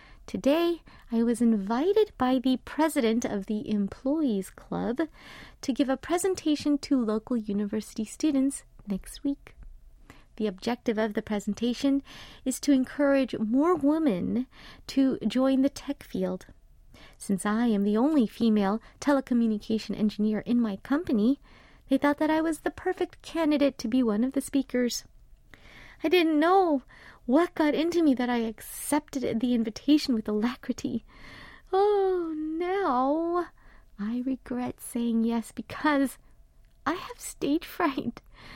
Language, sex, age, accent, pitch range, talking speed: English, female, 30-49, American, 230-300 Hz, 135 wpm